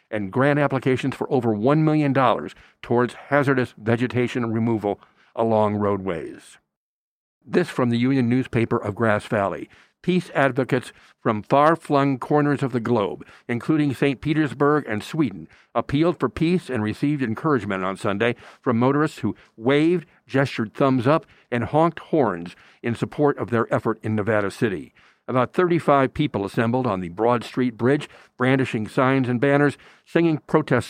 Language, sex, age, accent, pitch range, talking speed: English, male, 50-69, American, 115-140 Hz, 145 wpm